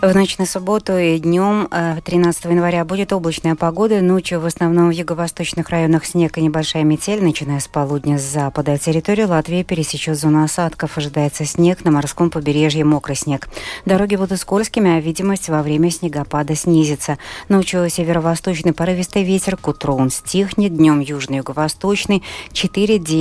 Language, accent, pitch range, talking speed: Russian, native, 155-190 Hz, 145 wpm